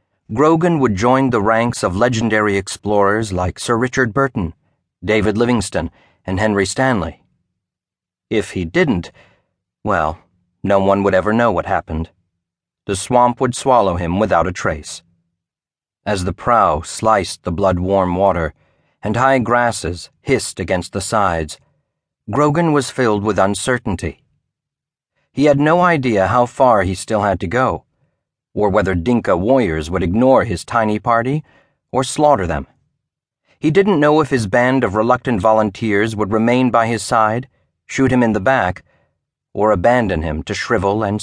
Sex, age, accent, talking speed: male, 50-69, American, 150 wpm